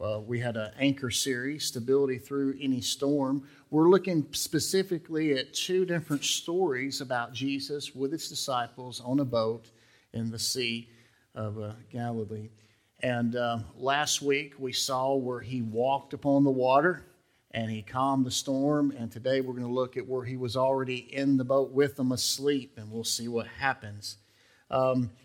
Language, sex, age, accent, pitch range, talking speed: English, male, 50-69, American, 115-140 Hz, 170 wpm